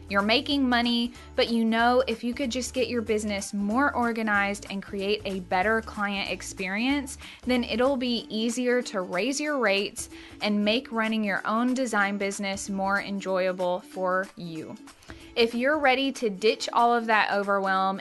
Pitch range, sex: 195-245 Hz, female